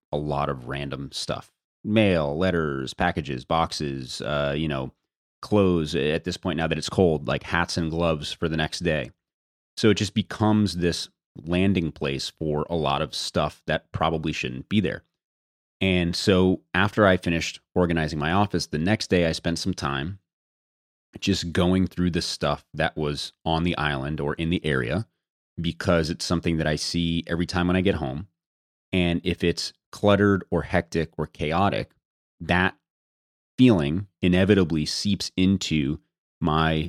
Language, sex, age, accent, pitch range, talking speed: English, male, 30-49, American, 75-95 Hz, 165 wpm